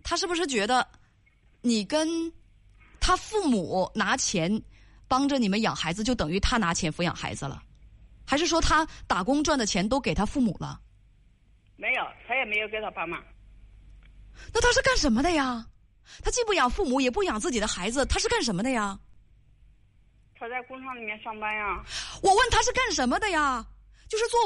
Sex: female